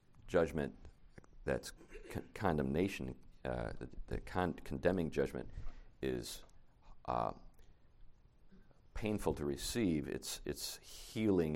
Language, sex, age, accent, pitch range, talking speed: English, male, 50-69, American, 75-95 Hz, 95 wpm